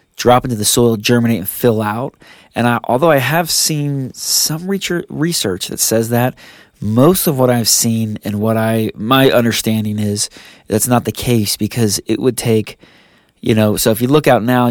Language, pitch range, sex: English, 105-125 Hz, male